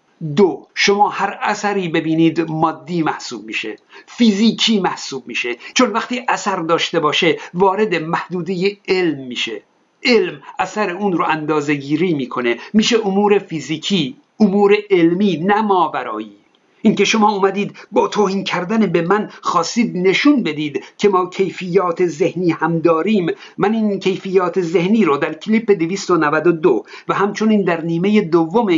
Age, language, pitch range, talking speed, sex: 50-69, Persian, 165-215 Hz, 130 wpm, male